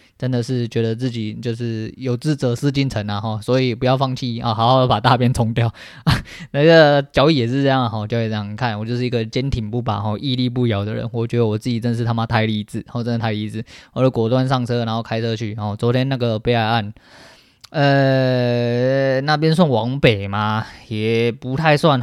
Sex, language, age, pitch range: male, Chinese, 10-29, 115-140 Hz